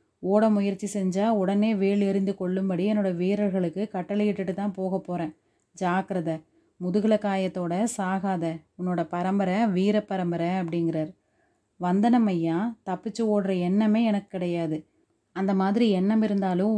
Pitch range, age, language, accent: 180-210 Hz, 30-49, Tamil, native